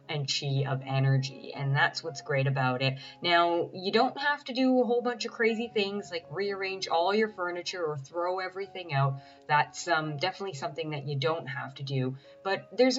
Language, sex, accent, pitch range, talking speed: English, female, American, 140-185 Hz, 200 wpm